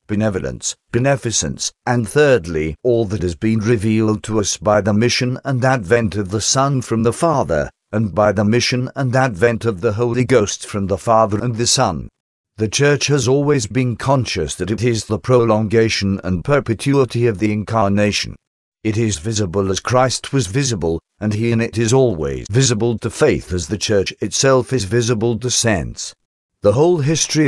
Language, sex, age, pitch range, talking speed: English, male, 50-69, 105-125 Hz, 175 wpm